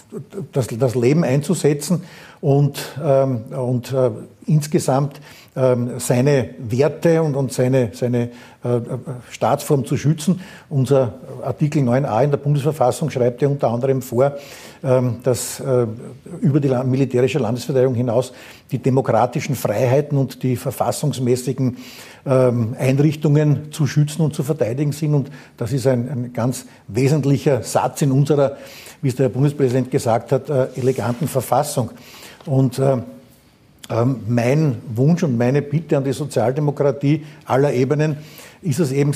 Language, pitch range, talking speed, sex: German, 130-150 Hz, 135 wpm, male